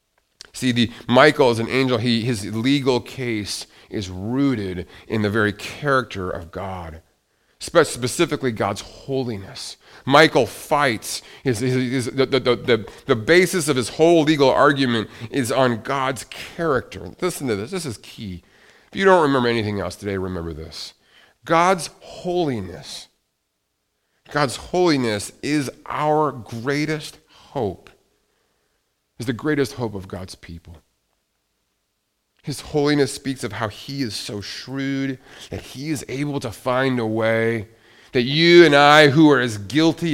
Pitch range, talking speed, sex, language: 110-150 Hz, 135 wpm, male, English